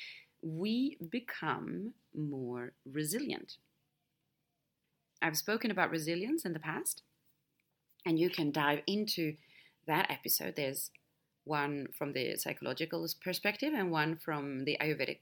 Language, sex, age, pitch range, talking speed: English, female, 30-49, 150-200 Hz, 115 wpm